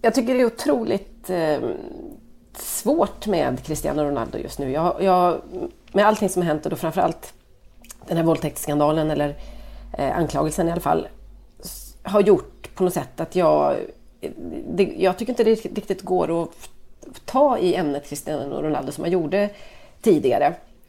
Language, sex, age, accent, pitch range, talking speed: Swedish, female, 30-49, native, 150-195 Hz, 150 wpm